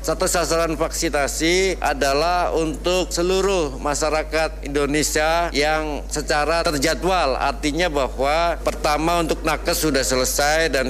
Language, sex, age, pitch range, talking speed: Indonesian, male, 50-69, 145-170 Hz, 105 wpm